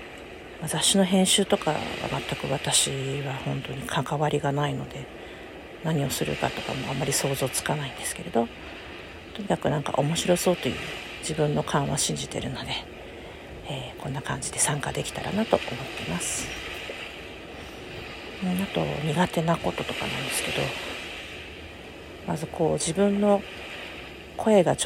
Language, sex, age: Japanese, female, 50-69